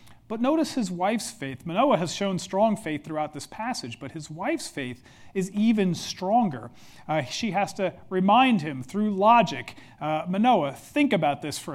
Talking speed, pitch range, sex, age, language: 175 wpm, 155-215 Hz, male, 40-59, English